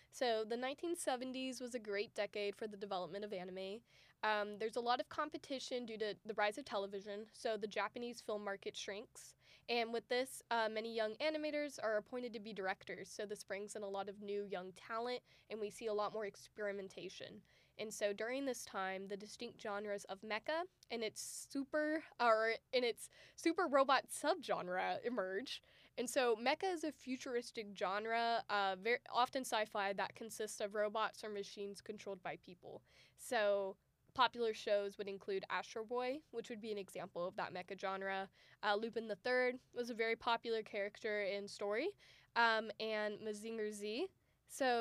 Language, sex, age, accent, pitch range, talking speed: English, female, 10-29, American, 205-250 Hz, 170 wpm